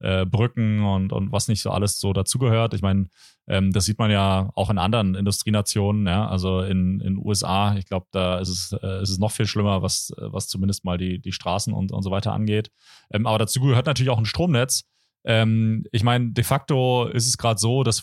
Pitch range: 95-110 Hz